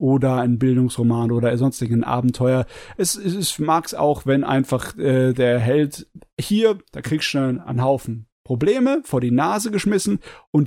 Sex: male